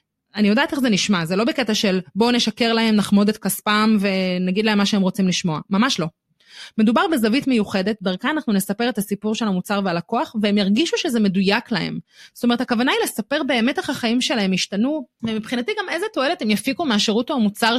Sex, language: female, Hebrew